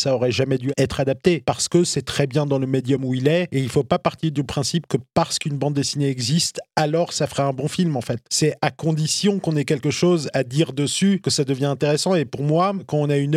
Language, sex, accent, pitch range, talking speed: French, male, French, 140-175 Hz, 265 wpm